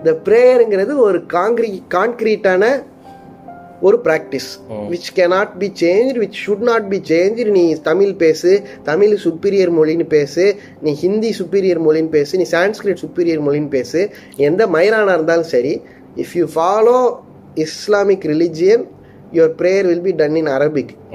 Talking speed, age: 135 wpm, 20-39